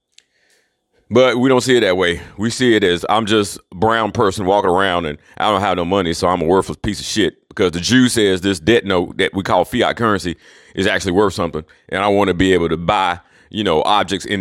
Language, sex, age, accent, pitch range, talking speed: English, male, 40-59, American, 105-170 Hz, 245 wpm